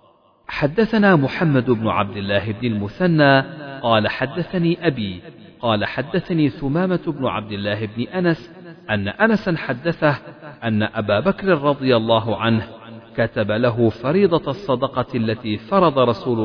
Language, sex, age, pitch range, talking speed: Arabic, male, 40-59, 110-165 Hz, 125 wpm